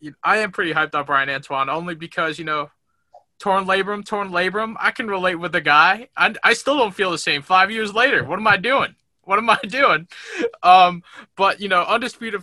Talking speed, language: 210 wpm, English